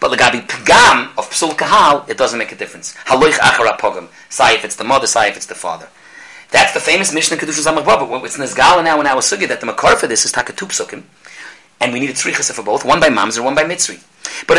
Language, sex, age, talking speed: English, male, 30-49, 255 wpm